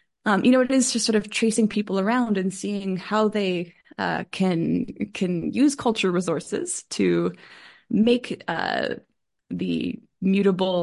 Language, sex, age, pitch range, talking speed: English, female, 20-39, 180-220 Hz, 145 wpm